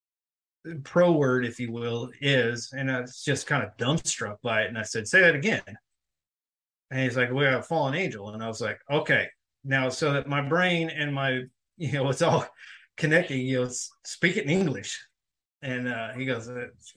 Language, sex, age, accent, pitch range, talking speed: English, male, 30-49, American, 115-135 Hz, 195 wpm